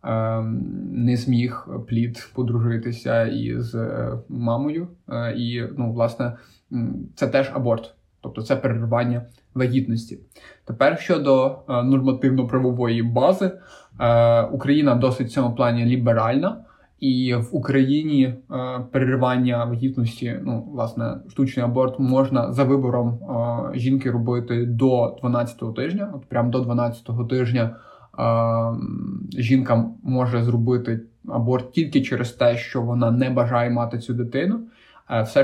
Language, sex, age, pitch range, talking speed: Ukrainian, male, 20-39, 120-135 Hz, 105 wpm